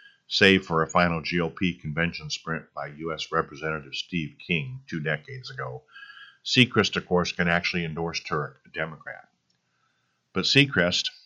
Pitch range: 80-105 Hz